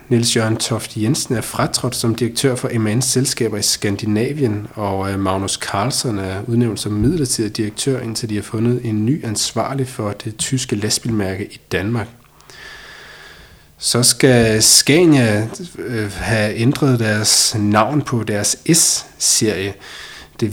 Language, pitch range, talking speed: Danish, 105-130 Hz, 130 wpm